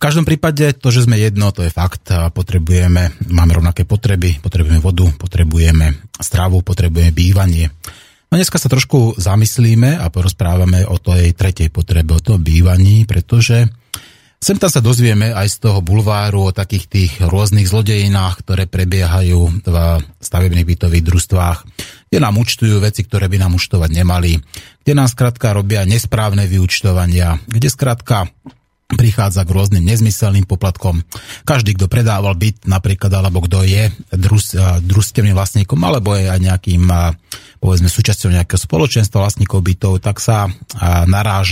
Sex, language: male, Slovak